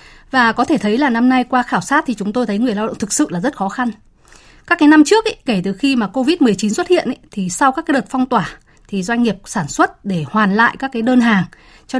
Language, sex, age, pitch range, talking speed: Vietnamese, female, 20-39, 200-260 Hz, 270 wpm